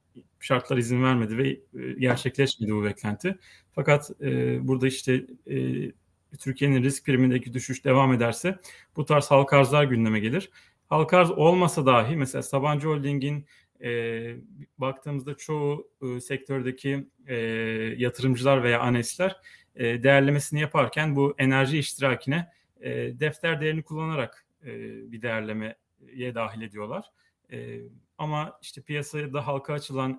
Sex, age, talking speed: male, 30-49, 105 wpm